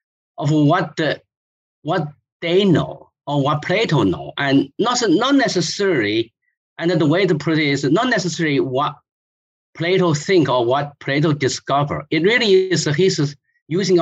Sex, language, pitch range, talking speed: male, English, 145-180 Hz, 145 wpm